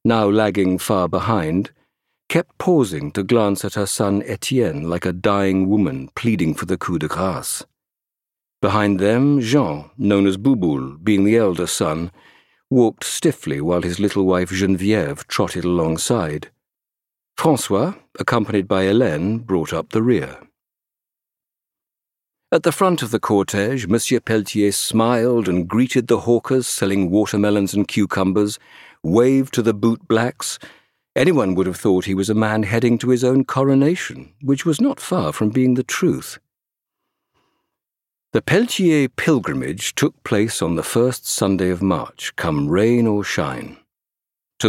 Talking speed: 145 wpm